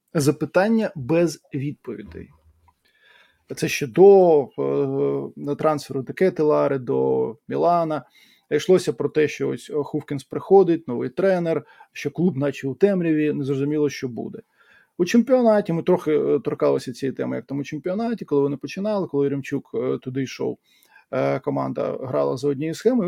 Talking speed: 140 wpm